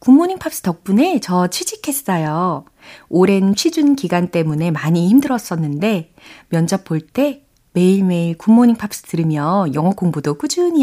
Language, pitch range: Korean, 155-230 Hz